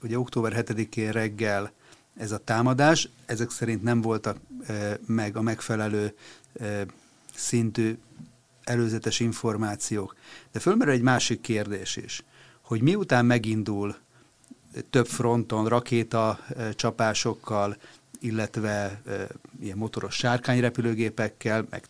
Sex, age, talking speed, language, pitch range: male, 30-49, 105 wpm, Hungarian, 110-125 Hz